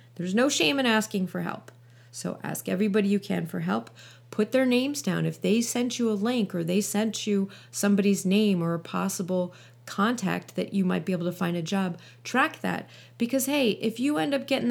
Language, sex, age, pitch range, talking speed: English, female, 30-49, 180-220 Hz, 210 wpm